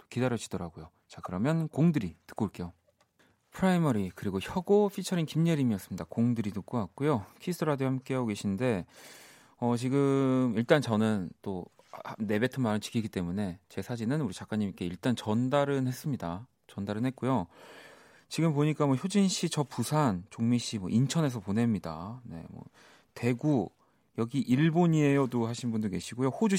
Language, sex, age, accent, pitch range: Korean, male, 40-59, native, 100-140 Hz